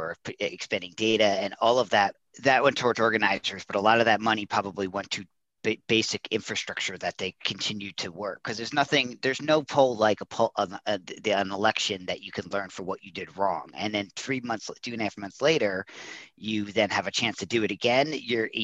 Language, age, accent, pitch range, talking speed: English, 40-59, American, 95-115 Hz, 230 wpm